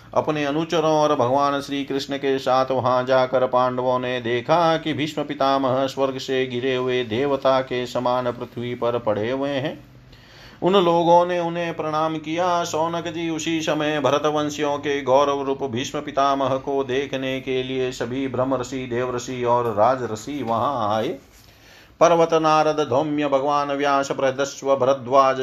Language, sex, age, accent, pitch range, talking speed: Hindi, male, 40-59, native, 130-150 Hz, 150 wpm